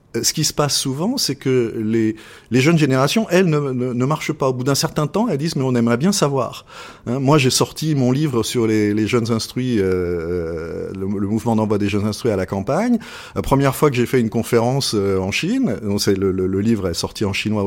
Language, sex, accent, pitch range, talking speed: French, male, French, 110-155 Hz, 245 wpm